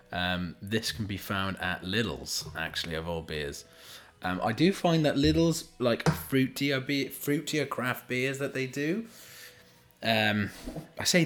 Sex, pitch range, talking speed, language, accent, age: male, 90-140 Hz, 155 wpm, English, British, 20-39